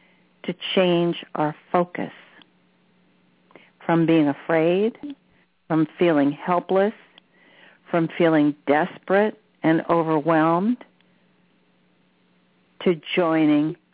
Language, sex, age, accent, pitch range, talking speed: English, female, 60-79, American, 150-200 Hz, 70 wpm